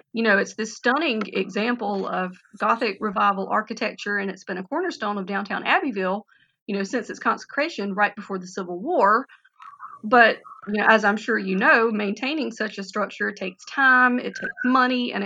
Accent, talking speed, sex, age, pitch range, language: American, 180 wpm, female, 30-49, 195-240 Hz, English